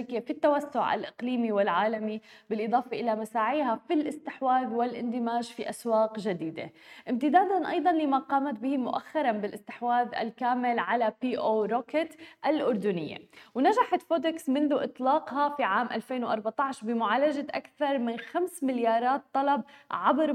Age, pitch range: 20-39, 230-285 Hz